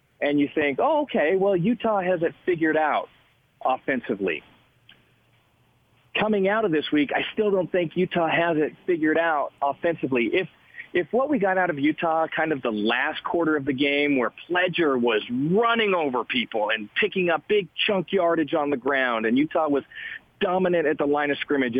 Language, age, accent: English, 40-59, American